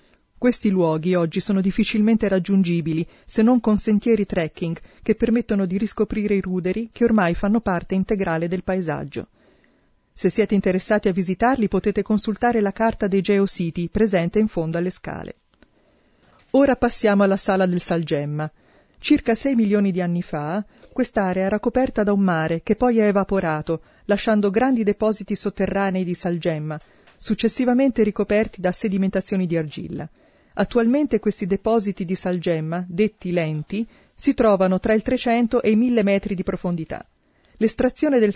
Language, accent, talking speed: Italian, native, 145 wpm